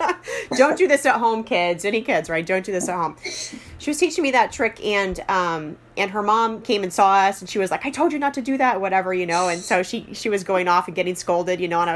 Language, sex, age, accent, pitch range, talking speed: English, female, 30-49, American, 155-195 Hz, 285 wpm